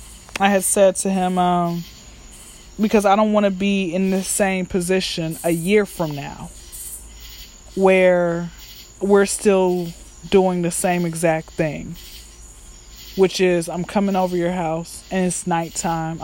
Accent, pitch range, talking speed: American, 180-215 Hz, 140 wpm